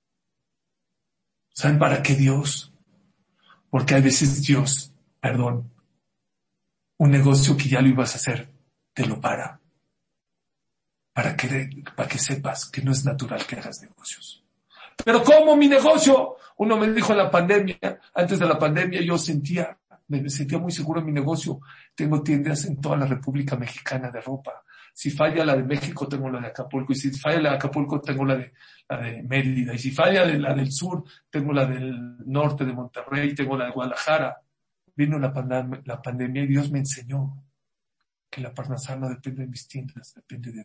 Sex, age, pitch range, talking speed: male, 50-69, 130-155 Hz, 175 wpm